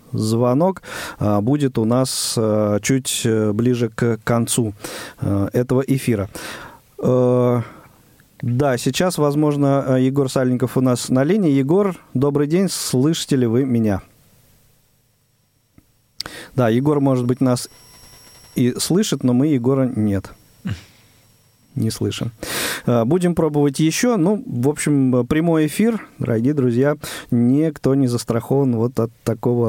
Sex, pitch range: male, 115-140 Hz